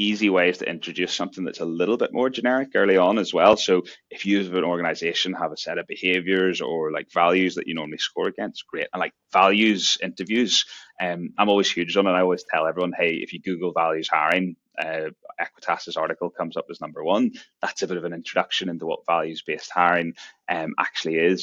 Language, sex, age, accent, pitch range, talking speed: English, male, 20-39, British, 85-95 Hz, 215 wpm